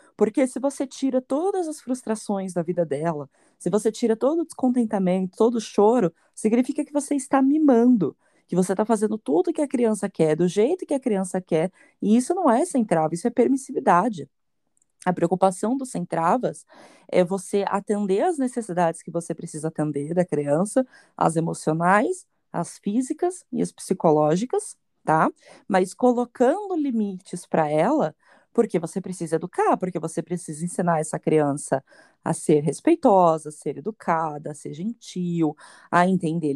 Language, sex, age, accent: Portuguese, female, 20-39, Brazilian